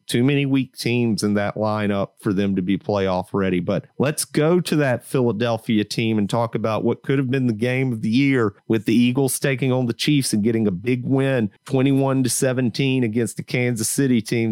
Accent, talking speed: American, 205 wpm